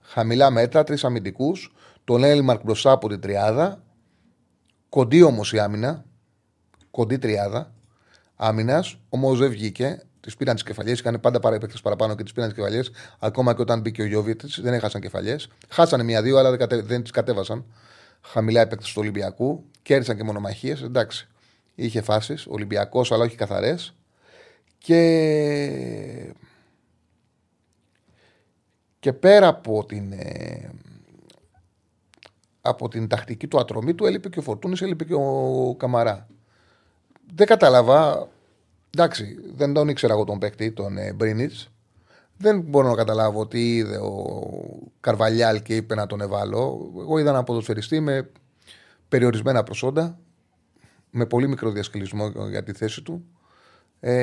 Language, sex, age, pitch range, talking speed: Greek, male, 30-49, 110-135 Hz, 140 wpm